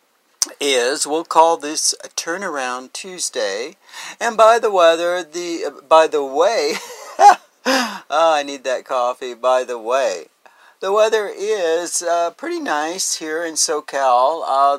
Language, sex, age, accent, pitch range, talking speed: English, male, 50-69, American, 135-200 Hz, 140 wpm